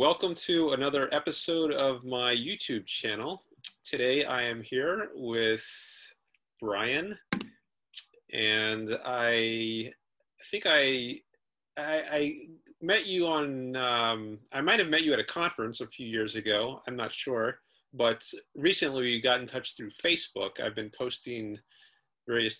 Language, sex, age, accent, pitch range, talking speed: English, male, 40-59, American, 110-140 Hz, 135 wpm